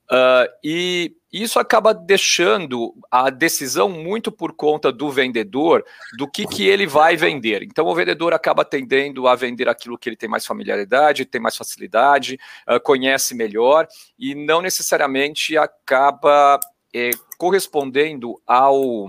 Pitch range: 130-200 Hz